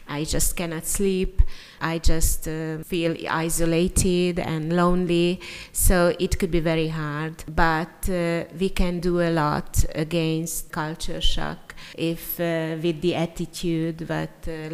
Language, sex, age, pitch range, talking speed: Hungarian, female, 30-49, 160-175 Hz, 140 wpm